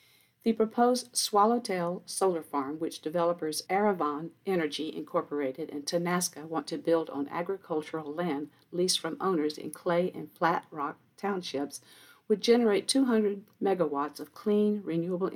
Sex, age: female, 50-69